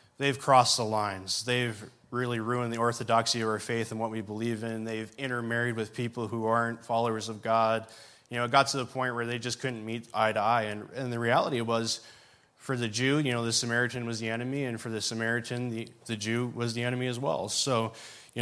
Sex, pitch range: male, 115-130 Hz